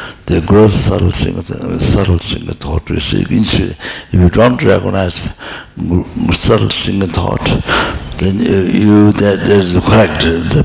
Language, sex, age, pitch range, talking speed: English, male, 60-79, 90-105 Hz, 125 wpm